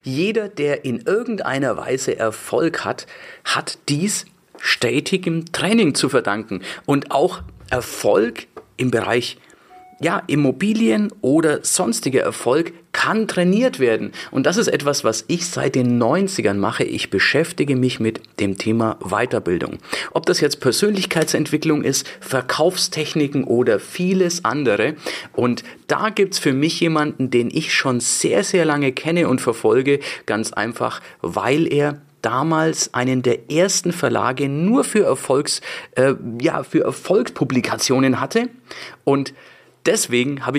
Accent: German